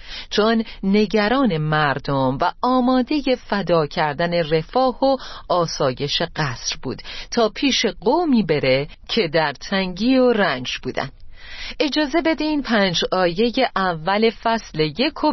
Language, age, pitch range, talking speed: Persian, 40-59, 165-230 Hz, 115 wpm